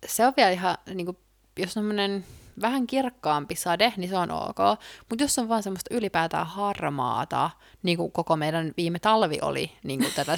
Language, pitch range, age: Finnish, 165-225 Hz, 20-39